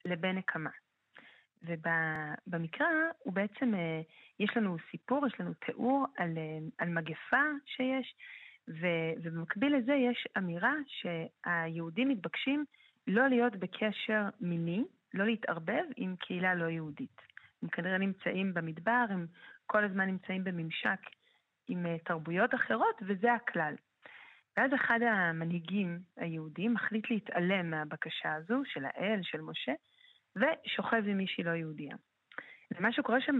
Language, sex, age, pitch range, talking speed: Hebrew, female, 40-59, 170-245 Hz, 115 wpm